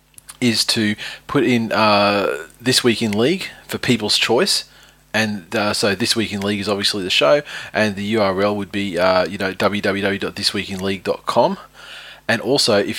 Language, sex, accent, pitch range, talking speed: English, male, Australian, 95-110 Hz, 160 wpm